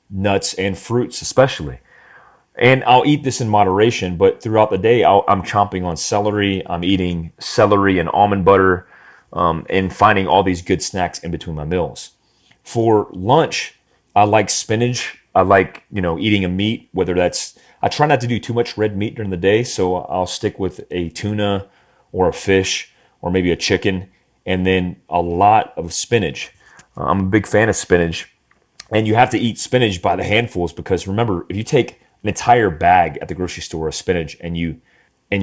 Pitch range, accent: 90-110 Hz, American